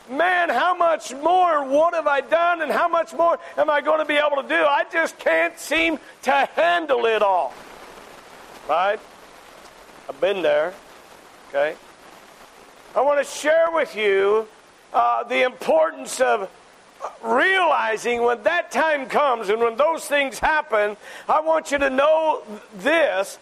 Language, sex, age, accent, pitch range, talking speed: English, male, 50-69, American, 255-330 Hz, 150 wpm